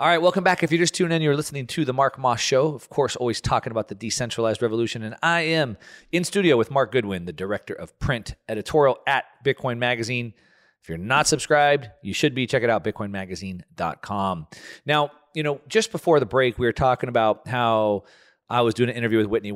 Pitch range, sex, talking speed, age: 95-130 Hz, male, 215 wpm, 30-49